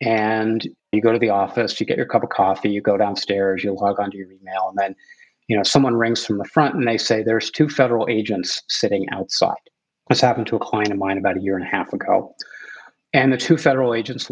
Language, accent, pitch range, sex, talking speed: English, American, 100-120 Hz, male, 240 wpm